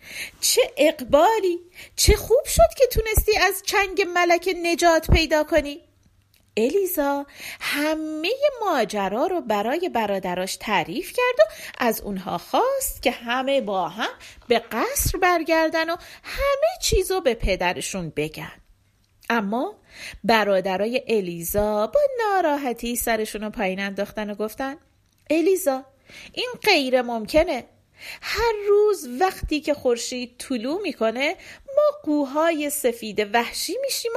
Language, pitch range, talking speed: Persian, 220-345 Hz, 115 wpm